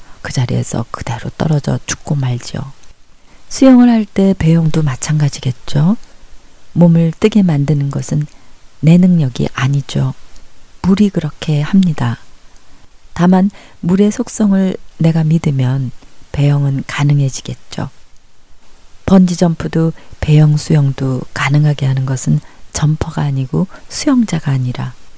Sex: female